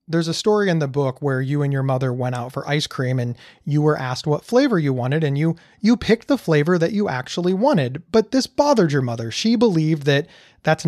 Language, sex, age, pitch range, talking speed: English, male, 30-49, 150-210 Hz, 235 wpm